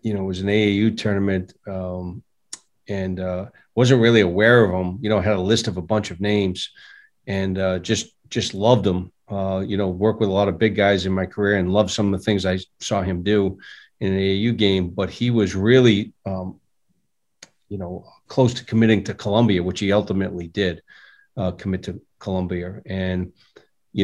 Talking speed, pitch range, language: 200 wpm, 95-110 Hz, English